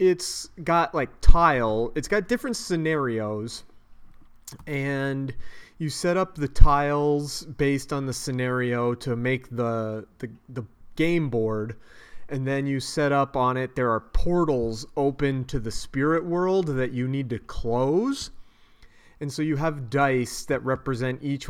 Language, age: English, 30-49